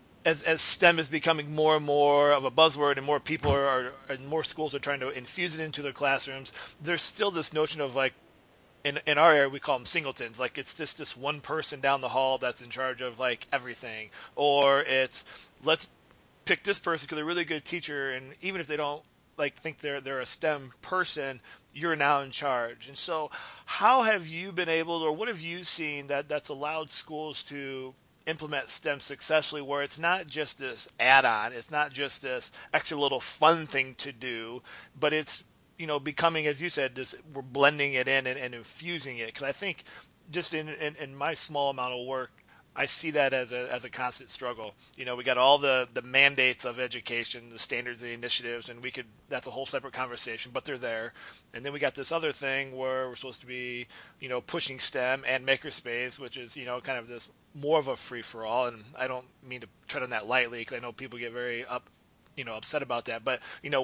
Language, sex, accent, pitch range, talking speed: English, male, American, 125-155 Hz, 225 wpm